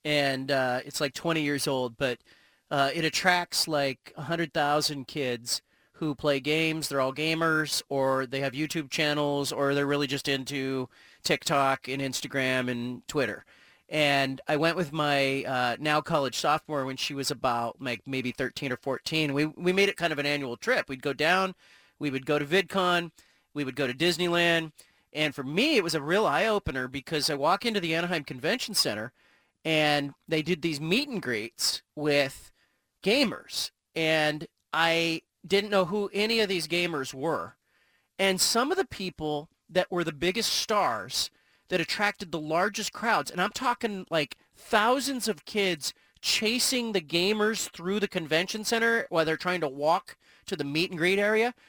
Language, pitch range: English, 140-185 Hz